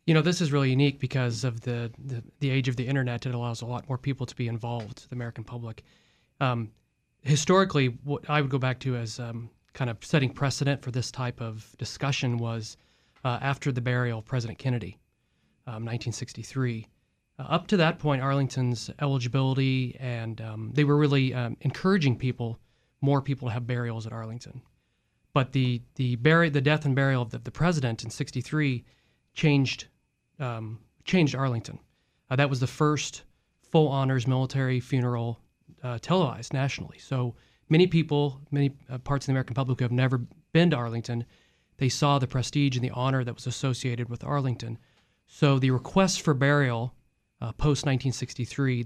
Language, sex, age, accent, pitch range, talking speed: English, male, 30-49, American, 120-140 Hz, 180 wpm